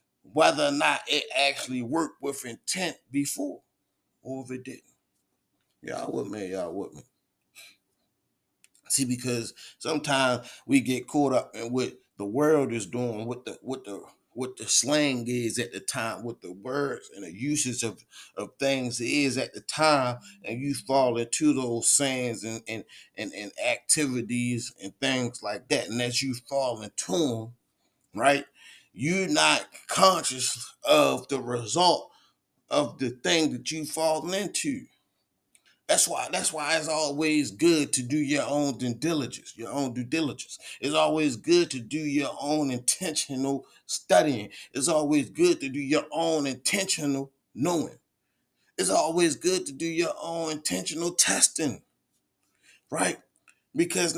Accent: American